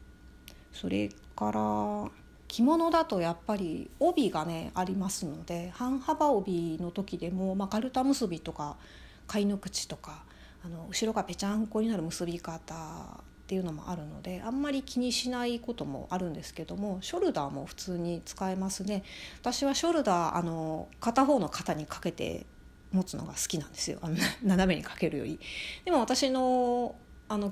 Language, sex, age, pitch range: Japanese, female, 30-49, 165-220 Hz